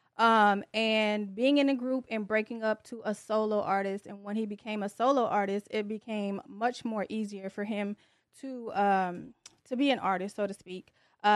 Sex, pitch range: female, 195-230 Hz